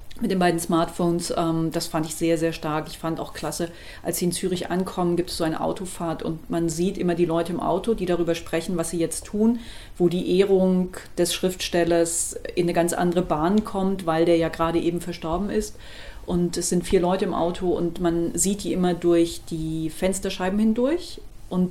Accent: German